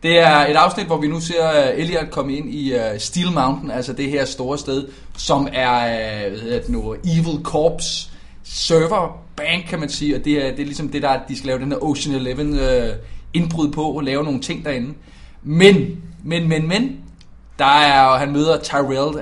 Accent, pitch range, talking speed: native, 130-160 Hz, 205 wpm